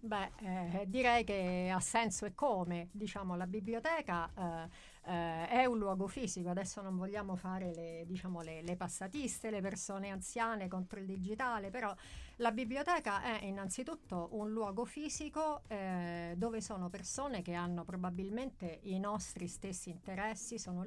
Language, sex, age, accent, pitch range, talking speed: Italian, female, 50-69, native, 180-215 Hz, 140 wpm